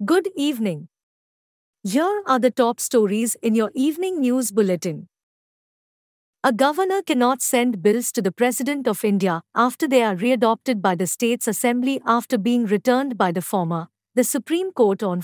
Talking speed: 160 wpm